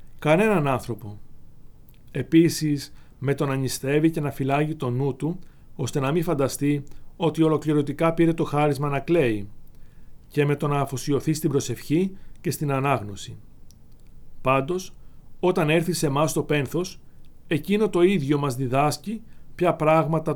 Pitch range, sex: 130-165 Hz, male